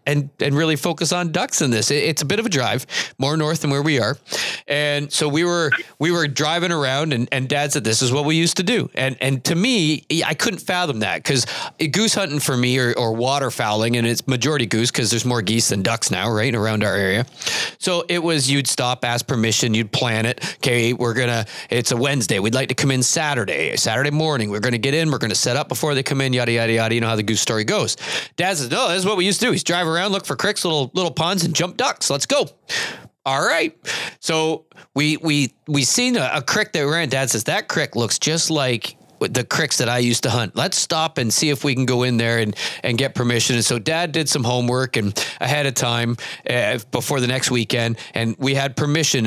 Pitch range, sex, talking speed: 120-160 Hz, male, 245 wpm